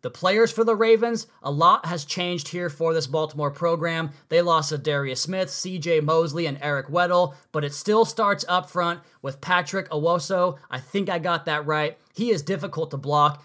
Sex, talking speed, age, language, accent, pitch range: male, 195 wpm, 20-39, English, American, 150-175 Hz